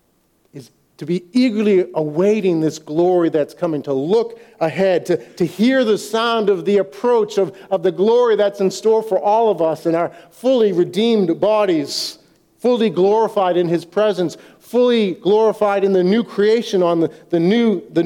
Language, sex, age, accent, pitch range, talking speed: English, male, 50-69, American, 145-215 Hz, 165 wpm